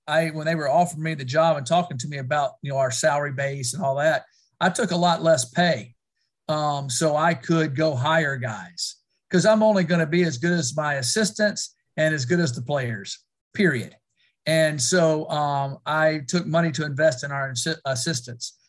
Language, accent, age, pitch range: English, American, 50-69, 140-170 Hz